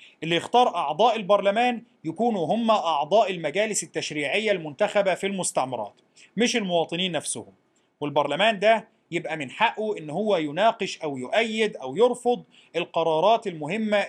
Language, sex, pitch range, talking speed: Arabic, male, 165-230 Hz, 125 wpm